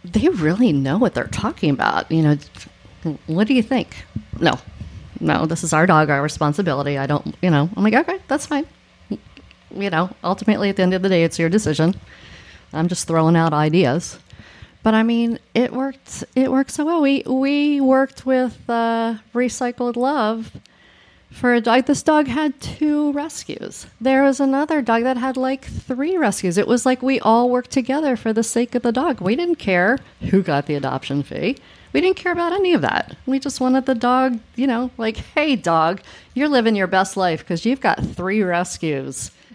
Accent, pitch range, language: American, 165-260 Hz, English